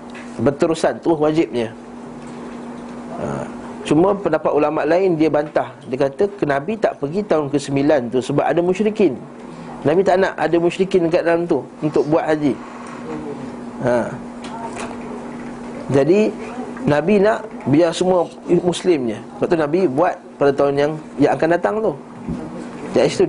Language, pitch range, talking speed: Malay, 140-180 Hz, 125 wpm